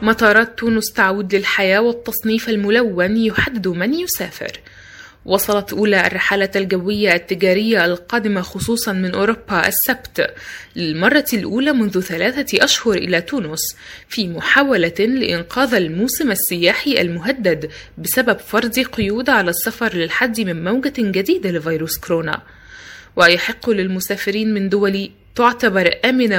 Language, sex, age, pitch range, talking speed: Arabic, female, 20-39, 180-235 Hz, 110 wpm